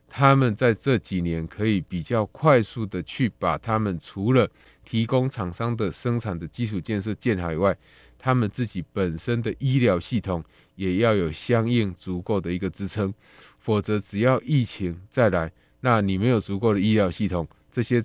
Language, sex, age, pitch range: Chinese, male, 20-39, 90-120 Hz